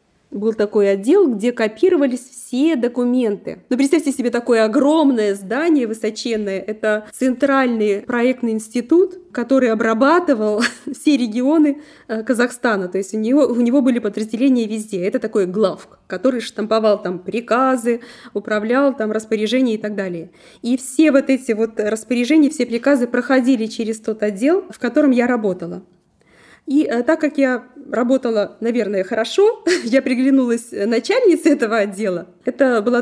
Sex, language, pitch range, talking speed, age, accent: female, Russian, 215-270 Hz, 140 wpm, 20-39, native